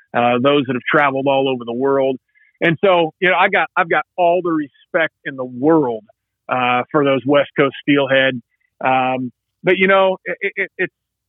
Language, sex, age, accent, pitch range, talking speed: English, male, 30-49, American, 130-155 Hz, 180 wpm